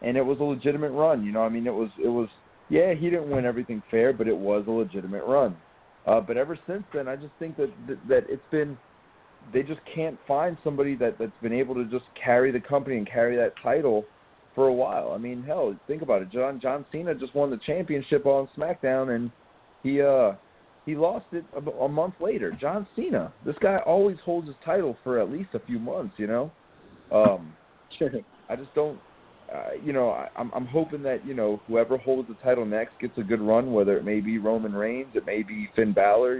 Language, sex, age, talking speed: English, male, 40-59, 220 wpm